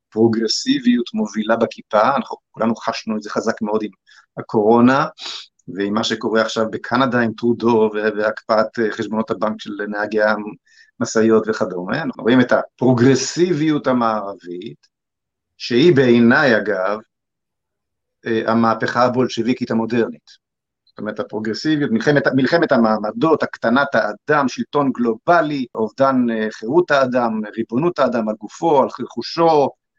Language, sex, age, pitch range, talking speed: Hebrew, male, 50-69, 110-130 Hz, 110 wpm